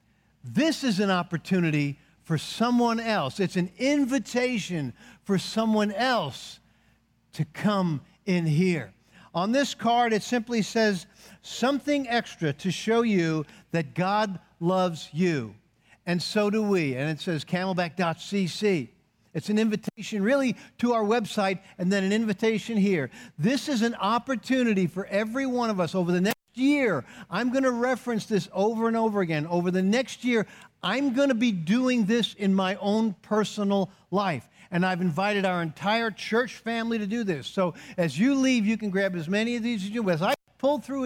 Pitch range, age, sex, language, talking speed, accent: 180-235 Hz, 50-69, male, English, 170 wpm, American